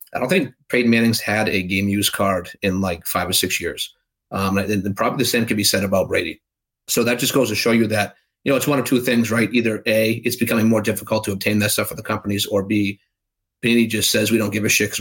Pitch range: 105-120 Hz